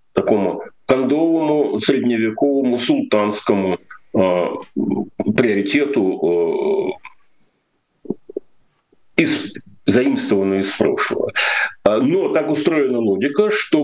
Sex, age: male, 40-59